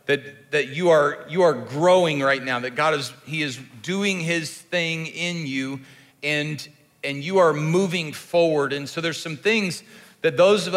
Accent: American